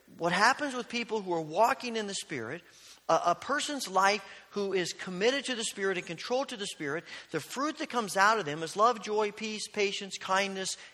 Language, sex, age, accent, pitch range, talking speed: English, male, 40-59, American, 145-220 Hz, 210 wpm